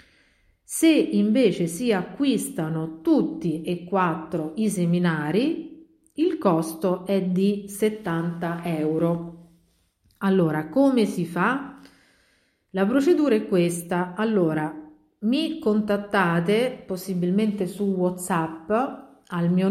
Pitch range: 165-210 Hz